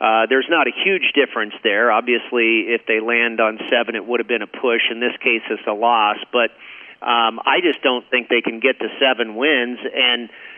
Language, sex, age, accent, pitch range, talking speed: English, male, 40-59, American, 115-150 Hz, 215 wpm